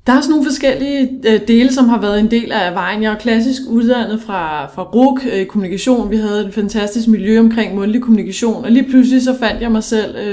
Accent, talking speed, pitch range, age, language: native, 215 wpm, 200-235 Hz, 20-39, Danish